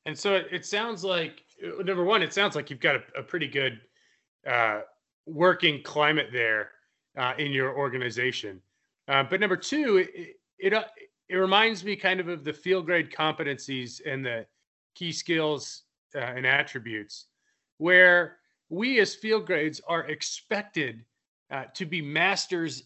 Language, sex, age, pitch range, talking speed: English, male, 30-49, 140-185 Hz, 150 wpm